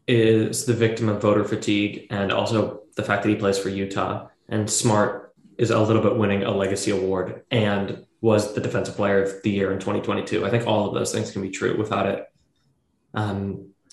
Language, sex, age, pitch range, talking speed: English, male, 20-39, 105-120 Hz, 200 wpm